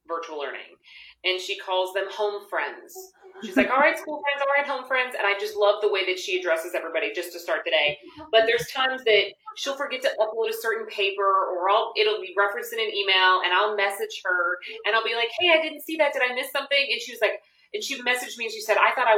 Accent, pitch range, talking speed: American, 190-310 Hz, 260 wpm